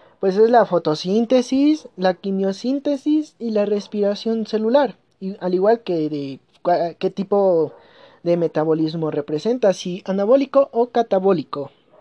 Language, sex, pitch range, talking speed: Spanish, male, 175-255 Hz, 120 wpm